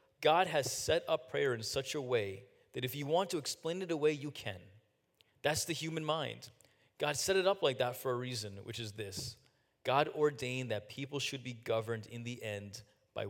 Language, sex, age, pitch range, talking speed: English, male, 30-49, 125-195 Hz, 210 wpm